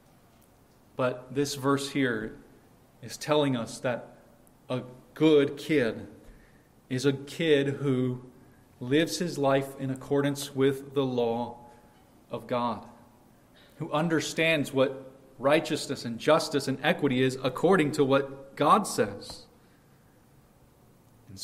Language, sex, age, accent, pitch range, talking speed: English, male, 40-59, American, 120-140 Hz, 110 wpm